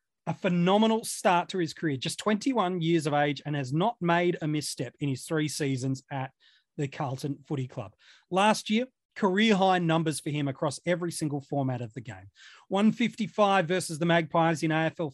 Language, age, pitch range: English, 30-49, 145-190 Hz